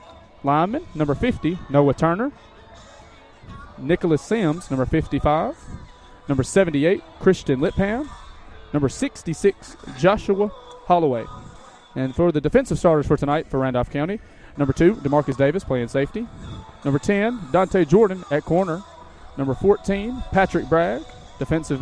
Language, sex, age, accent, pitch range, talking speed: English, male, 30-49, American, 140-195 Hz, 120 wpm